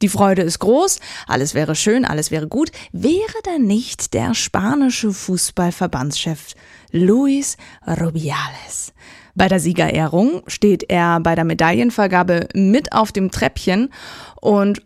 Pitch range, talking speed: 165-245 Hz, 125 wpm